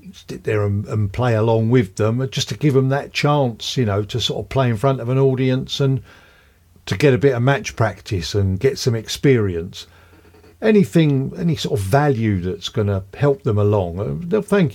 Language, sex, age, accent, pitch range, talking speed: English, male, 50-69, British, 95-130 Hz, 200 wpm